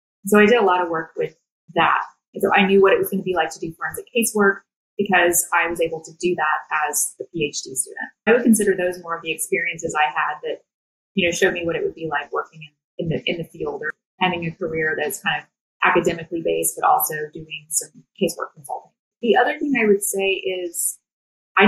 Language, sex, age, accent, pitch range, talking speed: English, female, 20-39, American, 165-200 Hz, 235 wpm